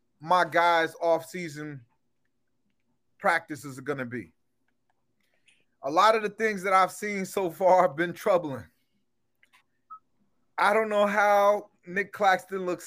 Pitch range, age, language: 165-205 Hz, 30-49, English